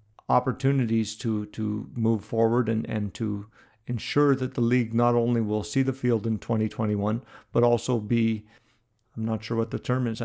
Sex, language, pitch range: male, English, 110-125 Hz